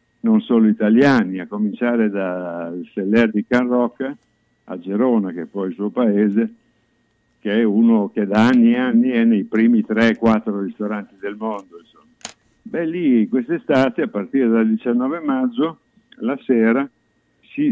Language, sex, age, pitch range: Italian, male, 60-79, 110-150 Hz